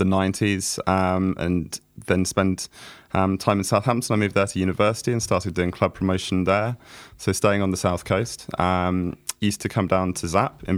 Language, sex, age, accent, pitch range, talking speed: English, male, 20-39, British, 85-100 Hz, 195 wpm